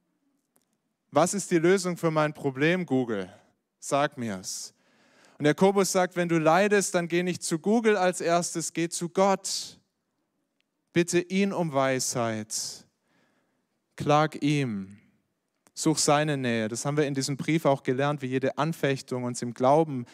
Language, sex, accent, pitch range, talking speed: German, male, German, 120-160 Hz, 150 wpm